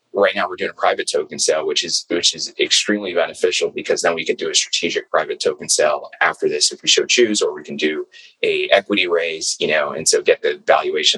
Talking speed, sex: 235 wpm, male